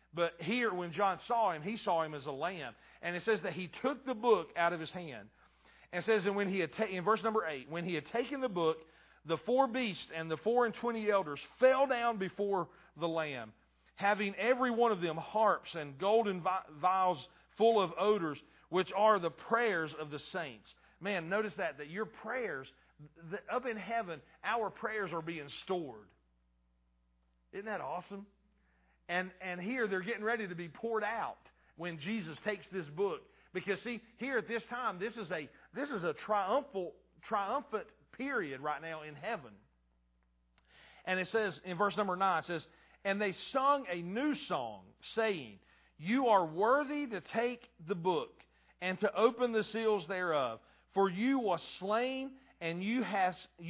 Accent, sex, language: American, male, English